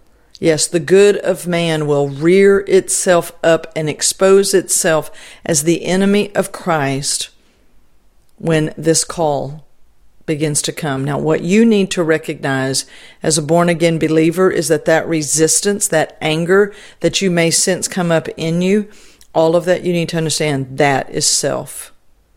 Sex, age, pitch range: female, 50-69, 145-180 Hz